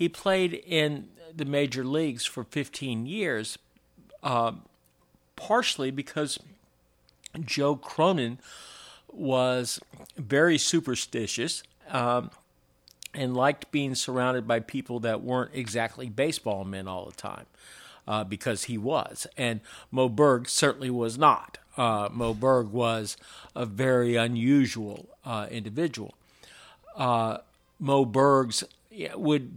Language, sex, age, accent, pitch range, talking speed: English, male, 50-69, American, 115-145 Hz, 110 wpm